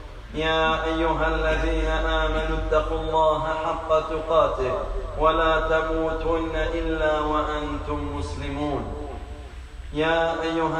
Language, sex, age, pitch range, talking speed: French, male, 30-49, 155-175 Hz, 85 wpm